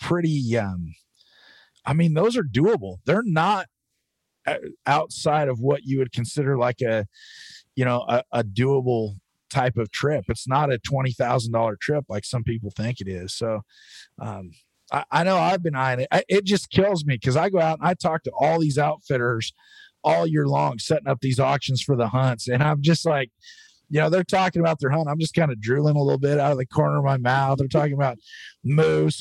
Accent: American